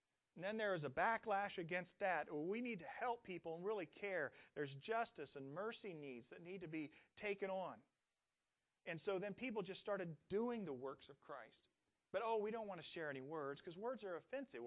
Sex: male